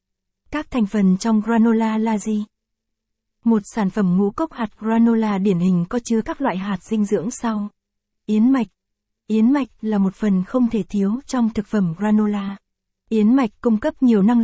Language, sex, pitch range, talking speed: Vietnamese, female, 200-235 Hz, 185 wpm